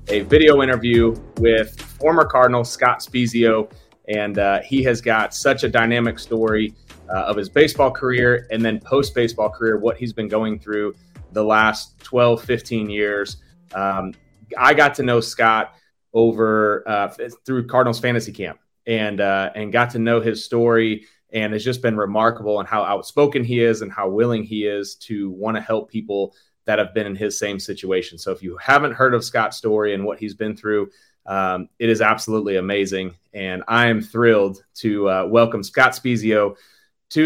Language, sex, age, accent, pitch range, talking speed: English, male, 30-49, American, 105-120 Hz, 180 wpm